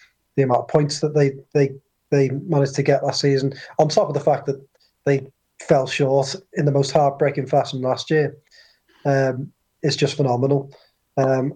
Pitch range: 130-145 Hz